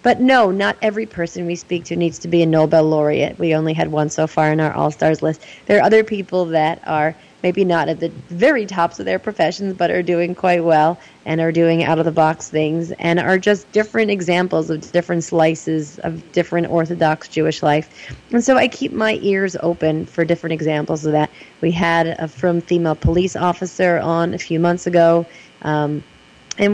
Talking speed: 195 wpm